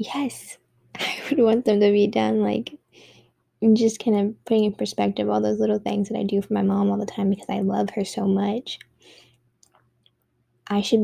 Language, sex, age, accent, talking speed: English, female, 10-29, American, 195 wpm